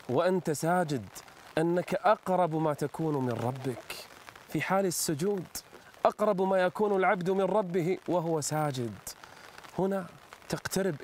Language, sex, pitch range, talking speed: Arabic, male, 140-215 Hz, 115 wpm